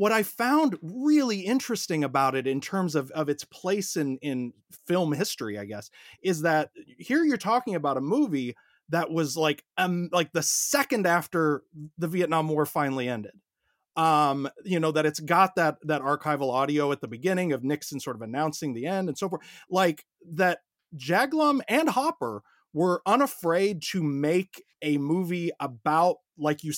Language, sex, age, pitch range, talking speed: English, male, 30-49, 140-185 Hz, 175 wpm